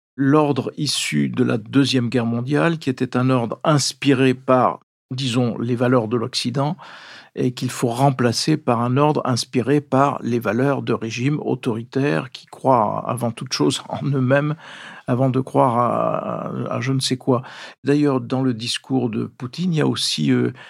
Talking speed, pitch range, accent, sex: 175 wpm, 125-145 Hz, French, male